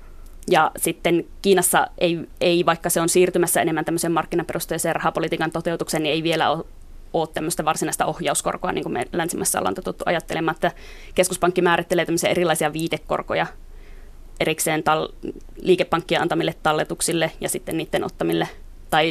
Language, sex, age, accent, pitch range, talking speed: Finnish, female, 20-39, native, 120-175 Hz, 140 wpm